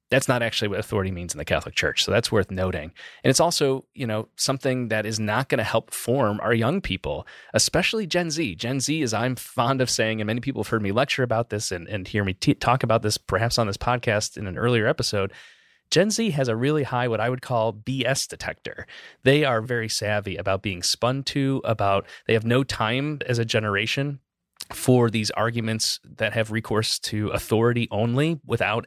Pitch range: 105-135 Hz